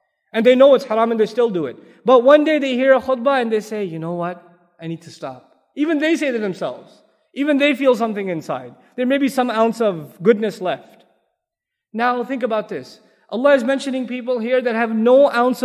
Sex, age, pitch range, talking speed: male, 20-39, 185-255 Hz, 220 wpm